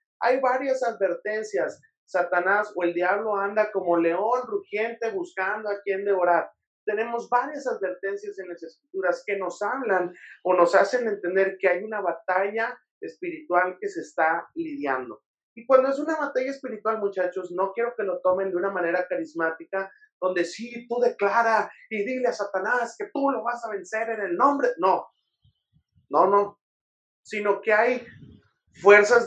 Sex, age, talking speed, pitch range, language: male, 30-49, 160 wpm, 175-240 Hz, Spanish